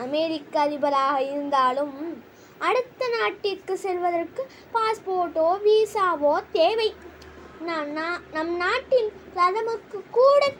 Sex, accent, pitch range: female, native, 300-400 Hz